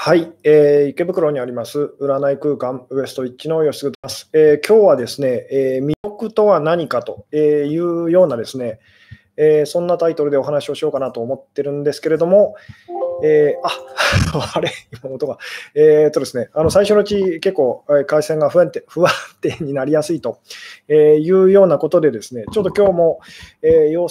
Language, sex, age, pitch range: Japanese, male, 20-39, 140-175 Hz